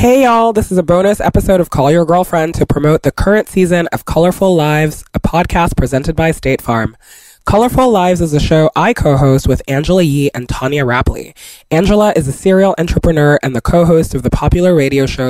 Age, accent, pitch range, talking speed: 20-39, American, 135-170 Hz, 200 wpm